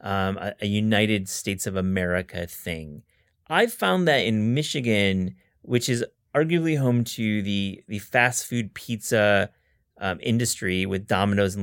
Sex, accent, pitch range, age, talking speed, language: male, American, 95-120 Hz, 30-49, 145 wpm, English